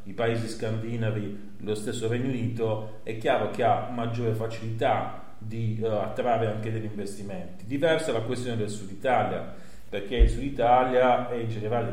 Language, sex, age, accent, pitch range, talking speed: Italian, male, 40-59, native, 110-125 Hz, 160 wpm